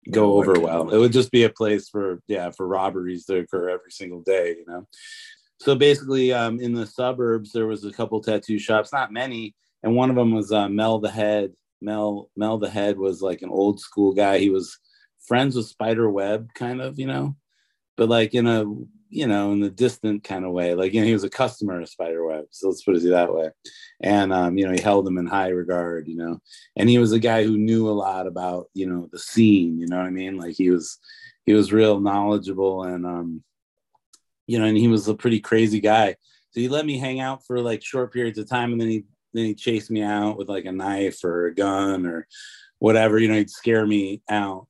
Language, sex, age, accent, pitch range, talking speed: English, male, 30-49, American, 95-115 Hz, 235 wpm